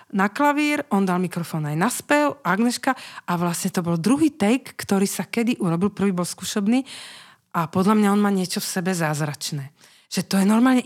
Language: Slovak